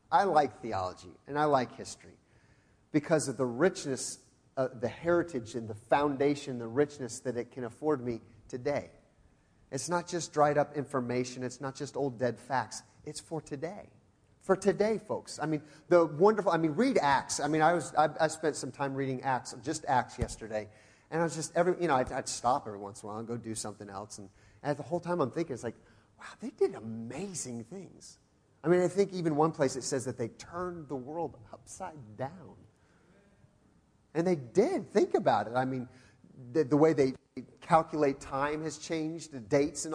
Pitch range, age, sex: 115-160 Hz, 40-59, male